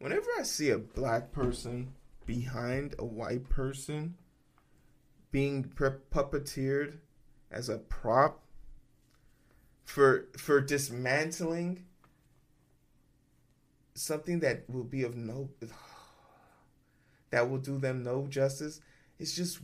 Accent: American